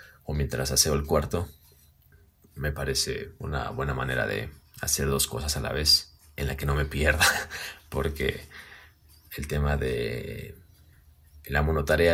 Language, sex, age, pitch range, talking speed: Spanish, male, 30-49, 75-95 Hz, 145 wpm